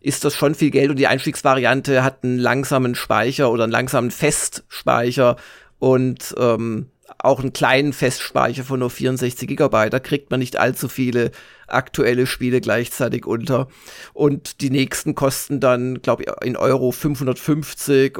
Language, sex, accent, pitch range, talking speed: German, male, German, 125-160 Hz, 150 wpm